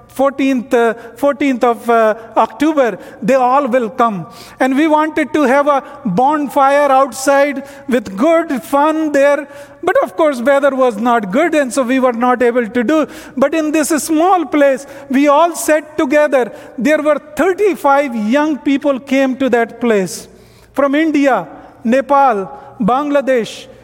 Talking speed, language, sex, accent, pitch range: 150 wpm, English, male, Indian, 245-290 Hz